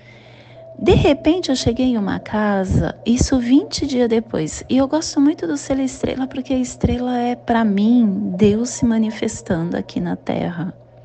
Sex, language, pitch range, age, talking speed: female, Portuguese, 145-235 Hz, 30-49, 165 wpm